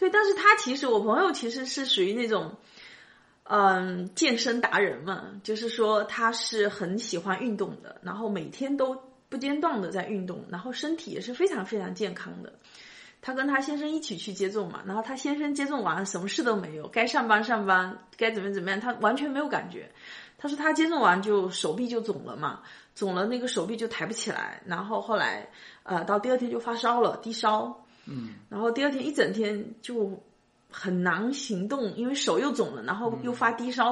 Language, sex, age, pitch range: Chinese, female, 30-49, 200-255 Hz